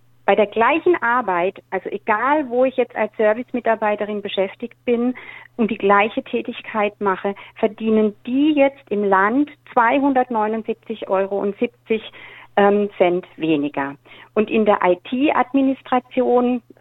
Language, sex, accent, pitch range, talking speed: German, female, German, 200-245 Hz, 105 wpm